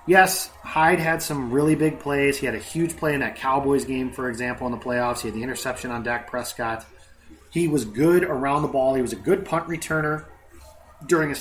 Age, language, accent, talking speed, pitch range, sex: 30-49, English, American, 220 wpm, 120-150 Hz, male